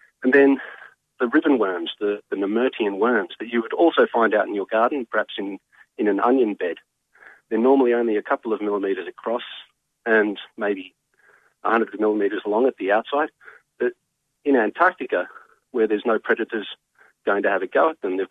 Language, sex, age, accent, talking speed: English, male, 40-59, Australian, 185 wpm